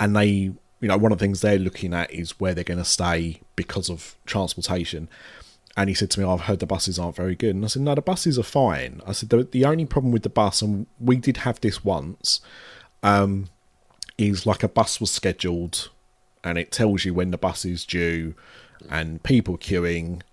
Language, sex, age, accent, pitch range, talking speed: English, male, 30-49, British, 85-105 Hz, 220 wpm